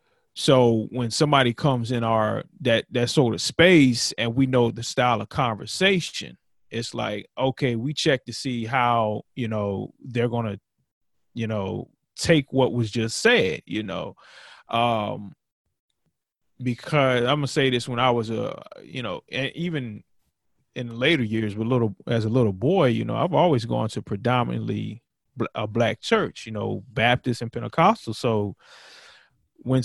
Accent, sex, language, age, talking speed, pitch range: American, male, English, 30-49, 165 wpm, 115-140 Hz